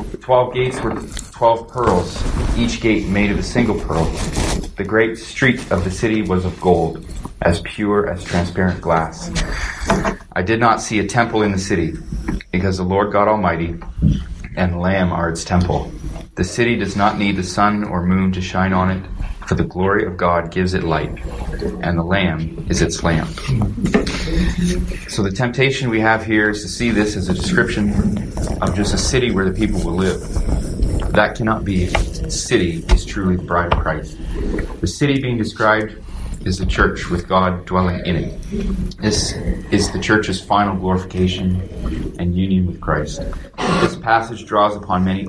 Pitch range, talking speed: 90-110 Hz, 175 wpm